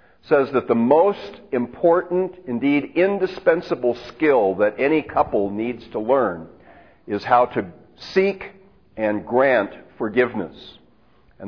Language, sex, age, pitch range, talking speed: English, male, 50-69, 120-165 Hz, 115 wpm